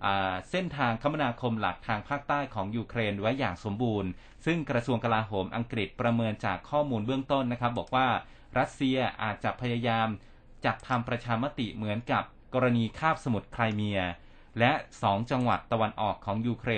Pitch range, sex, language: 110-135 Hz, male, Thai